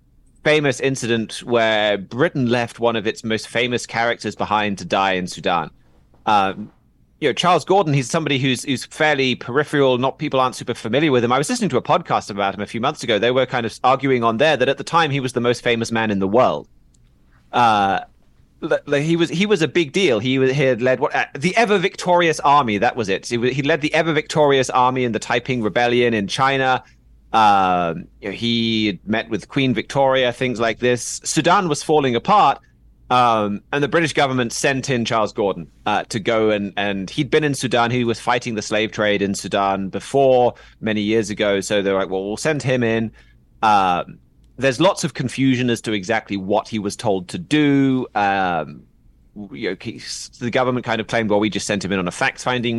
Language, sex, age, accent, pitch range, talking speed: English, male, 30-49, British, 105-135 Hz, 210 wpm